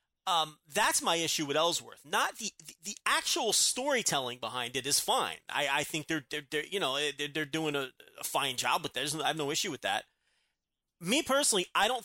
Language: English